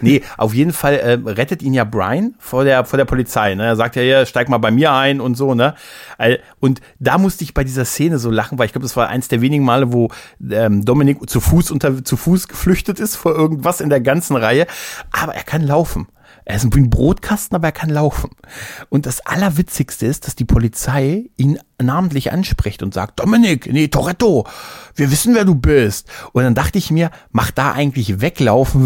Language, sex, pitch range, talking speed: German, male, 125-165 Hz, 210 wpm